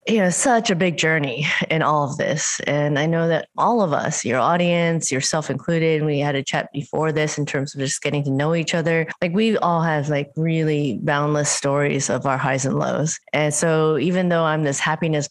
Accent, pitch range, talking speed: American, 145-170 Hz, 220 wpm